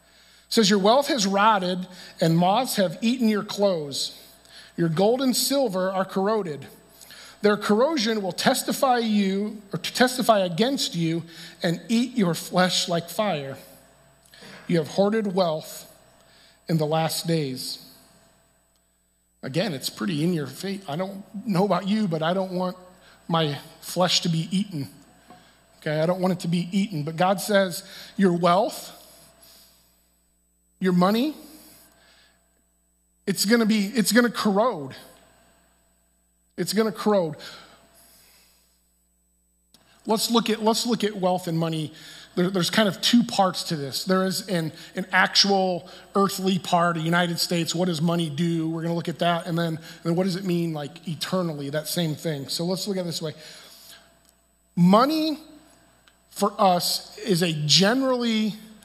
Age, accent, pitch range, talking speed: 50-69, American, 155-205 Hz, 150 wpm